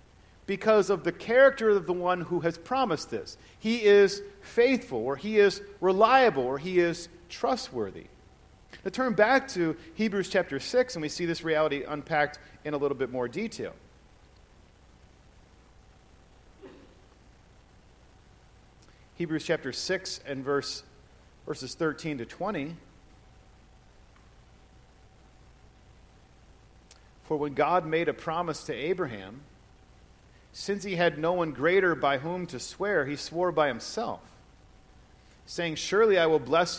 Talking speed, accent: 125 wpm, American